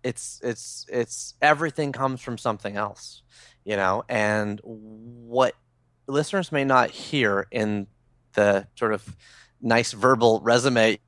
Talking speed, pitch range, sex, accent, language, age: 125 wpm, 110-135 Hz, male, American, English, 30-49